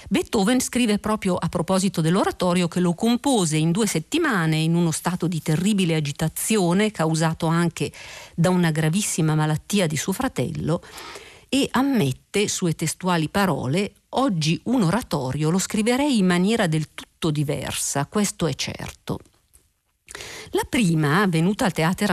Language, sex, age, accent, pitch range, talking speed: Italian, female, 50-69, native, 160-215 Hz, 135 wpm